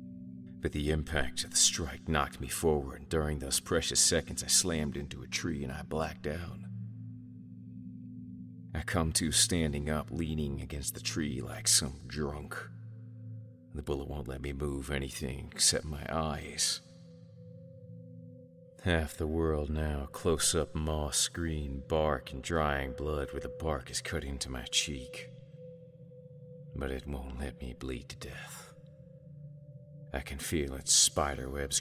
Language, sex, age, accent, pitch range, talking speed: English, male, 40-59, American, 70-90 Hz, 145 wpm